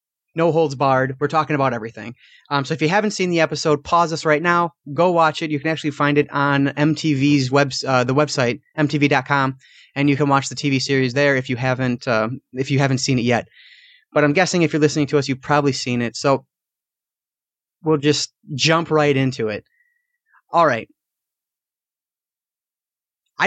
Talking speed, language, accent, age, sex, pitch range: 190 wpm, English, American, 30-49, male, 135-160 Hz